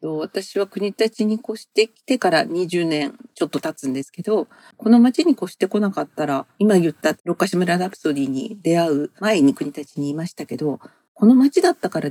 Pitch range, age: 150-235 Hz, 50-69